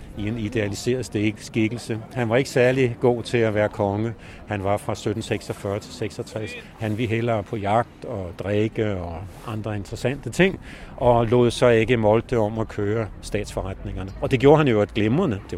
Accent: native